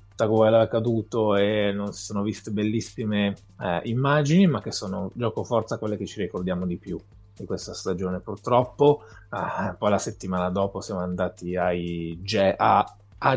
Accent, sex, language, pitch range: native, male, Italian, 95-115 Hz